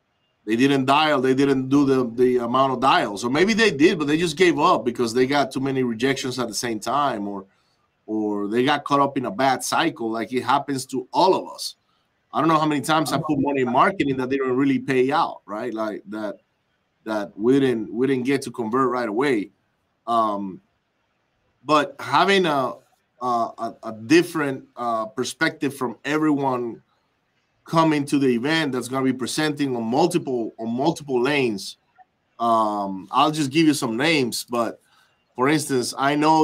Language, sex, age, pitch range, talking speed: English, male, 30-49, 120-150 Hz, 185 wpm